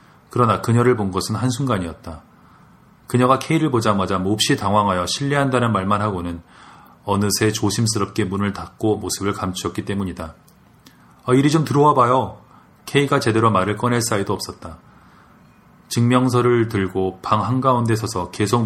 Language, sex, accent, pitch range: Korean, male, native, 95-120 Hz